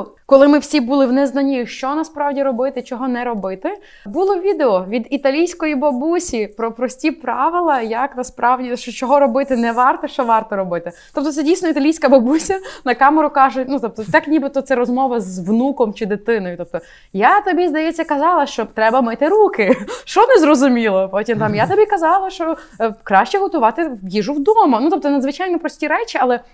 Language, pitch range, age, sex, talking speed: Ukrainian, 230-305 Hz, 20-39, female, 175 wpm